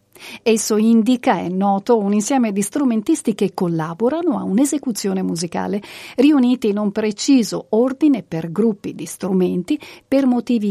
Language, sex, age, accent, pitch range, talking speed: Italian, female, 50-69, native, 195-255 Hz, 135 wpm